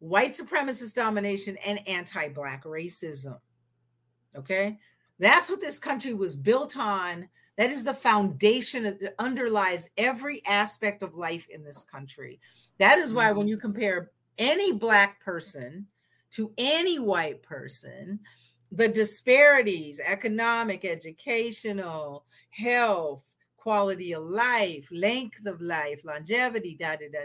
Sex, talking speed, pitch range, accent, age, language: female, 120 wpm, 170-235 Hz, American, 50-69, English